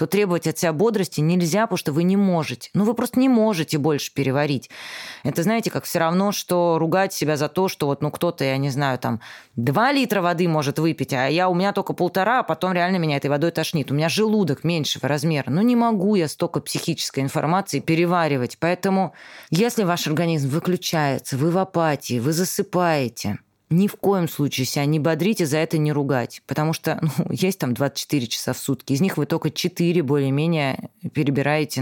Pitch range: 140-180 Hz